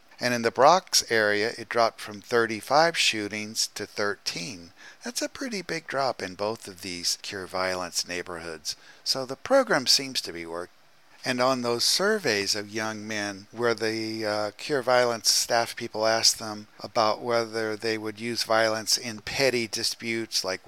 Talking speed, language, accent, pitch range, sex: 165 wpm, English, American, 100-120 Hz, male